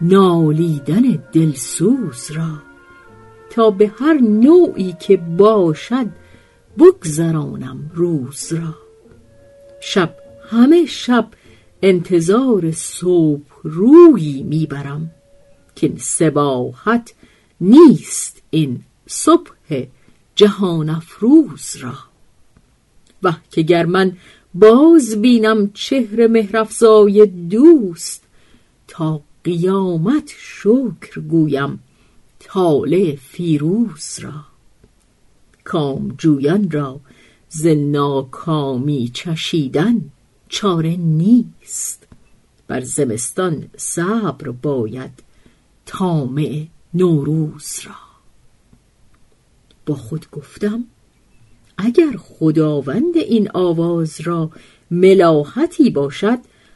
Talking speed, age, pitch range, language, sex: 70 wpm, 50-69, 150-220 Hz, Persian, female